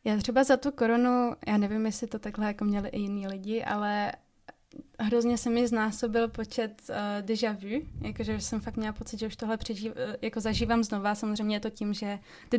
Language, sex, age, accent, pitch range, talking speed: Czech, female, 20-39, native, 210-235 Hz, 200 wpm